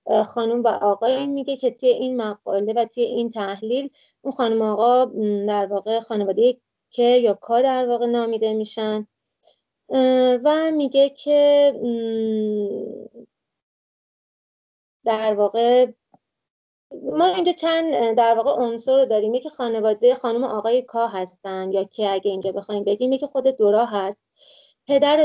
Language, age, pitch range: English, 30-49, 210-260 Hz